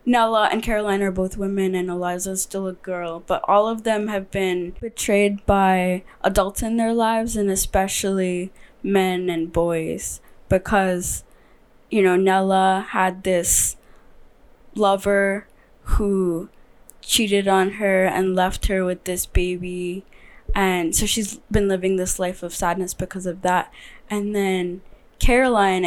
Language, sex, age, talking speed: English, female, 20-39, 140 wpm